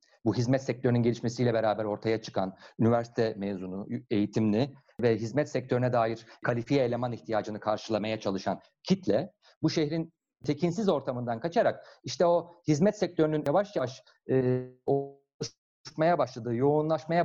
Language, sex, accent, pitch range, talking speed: Turkish, male, native, 120-165 Hz, 125 wpm